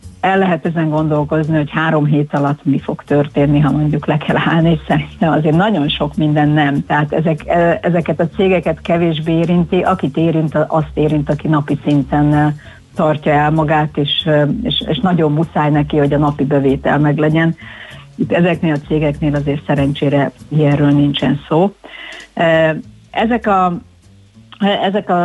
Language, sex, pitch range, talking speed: Hungarian, female, 150-170 Hz, 150 wpm